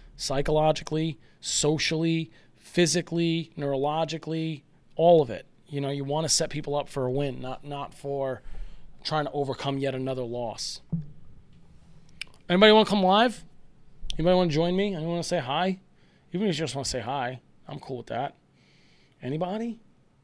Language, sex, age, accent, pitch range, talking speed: English, male, 30-49, American, 130-170 Hz, 165 wpm